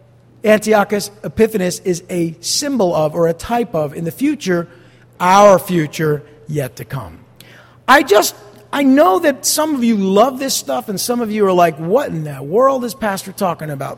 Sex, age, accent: male, 50-69, American